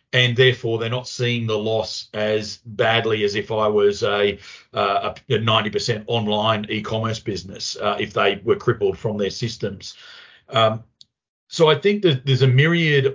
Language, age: English, 40-59